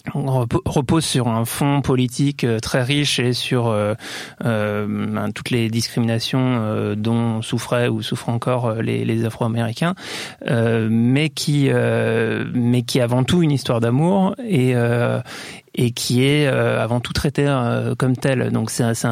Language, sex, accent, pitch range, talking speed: French, male, French, 115-135 Hz, 160 wpm